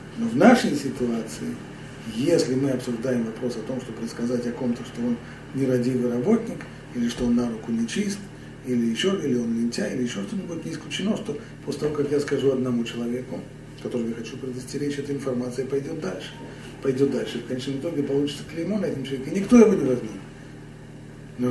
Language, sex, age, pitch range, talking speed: Russian, male, 40-59, 125-155 Hz, 185 wpm